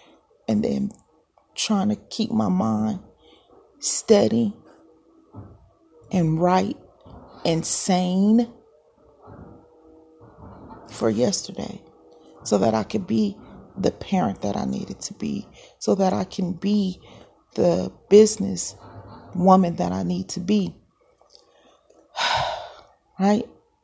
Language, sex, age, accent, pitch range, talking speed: English, female, 30-49, American, 160-215 Hz, 100 wpm